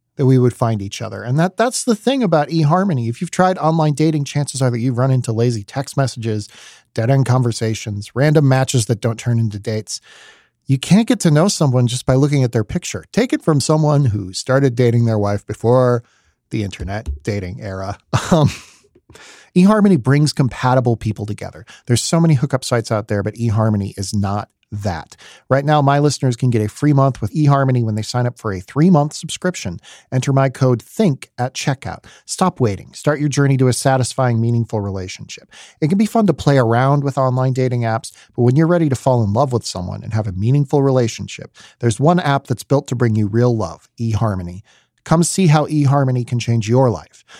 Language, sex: English, male